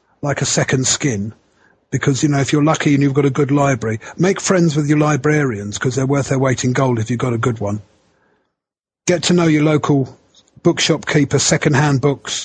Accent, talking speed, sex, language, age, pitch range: British, 205 wpm, male, English, 40-59, 135-165 Hz